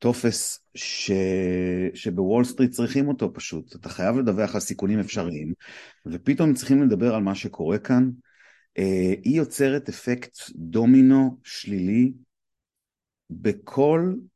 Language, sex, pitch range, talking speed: Hebrew, male, 100-140 Hz, 110 wpm